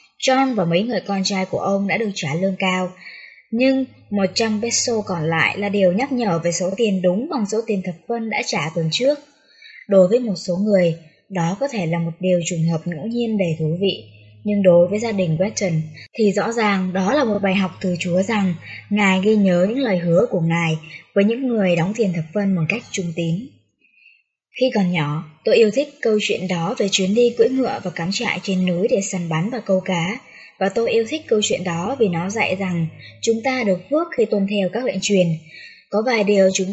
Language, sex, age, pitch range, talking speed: Vietnamese, male, 20-39, 175-220 Hz, 230 wpm